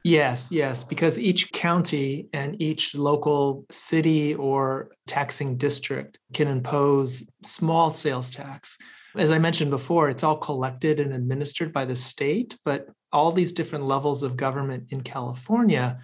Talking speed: 140 wpm